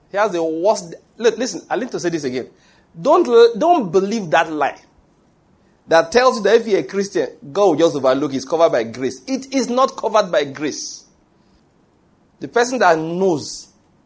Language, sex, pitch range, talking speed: English, male, 165-240 Hz, 190 wpm